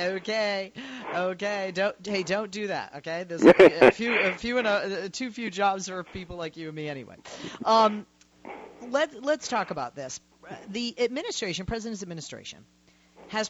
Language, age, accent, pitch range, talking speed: English, 40-59, American, 155-205 Hz, 170 wpm